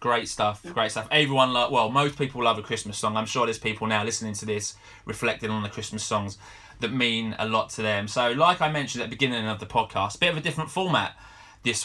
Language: English